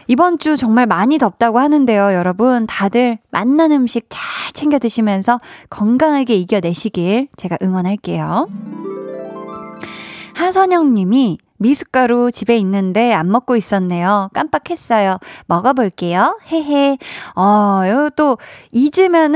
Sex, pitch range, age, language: female, 200-275 Hz, 20-39, Korean